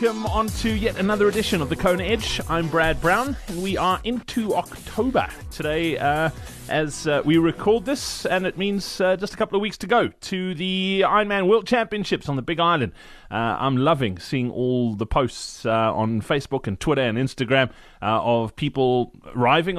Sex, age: male, 30-49